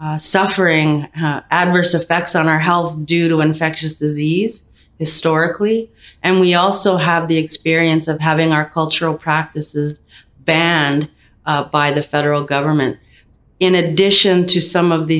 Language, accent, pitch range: English, American, 150-175 Hz